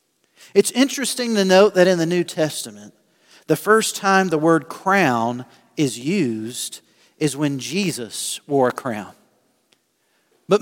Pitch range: 140-190 Hz